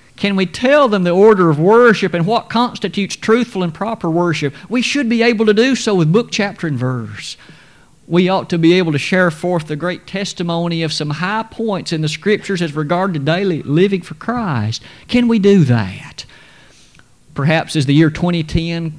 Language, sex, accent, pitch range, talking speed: English, male, American, 140-185 Hz, 195 wpm